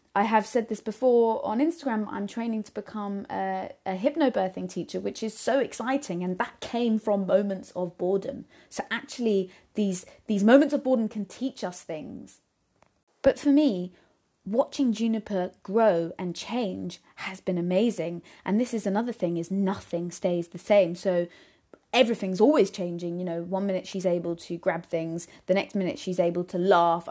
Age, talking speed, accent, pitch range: 20-39, 175 wpm, British, 175-215 Hz